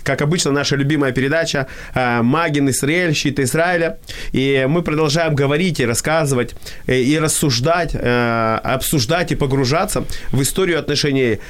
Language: Ukrainian